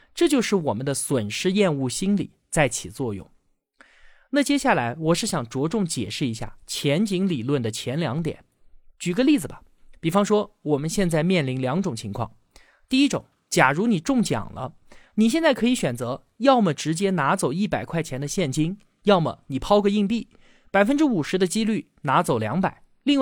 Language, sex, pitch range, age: Chinese, male, 135-215 Hz, 20-39